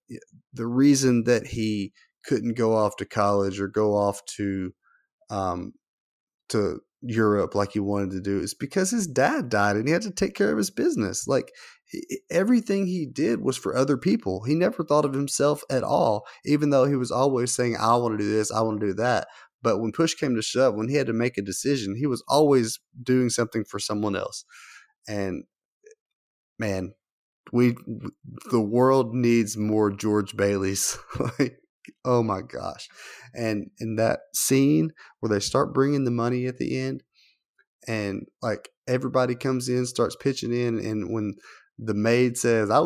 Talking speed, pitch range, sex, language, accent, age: 180 wpm, 105-145 Hz, male, English, American, 30-49